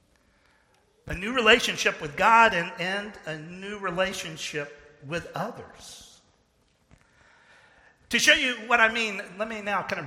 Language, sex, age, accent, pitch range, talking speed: English, male, 50-69, American, 150-205 Hz, 135 wpm